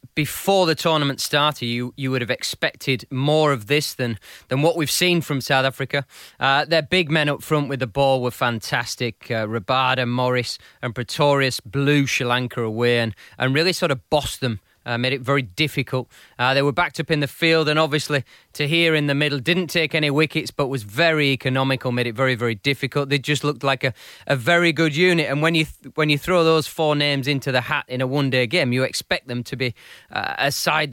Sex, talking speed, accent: male, 225 wpm, British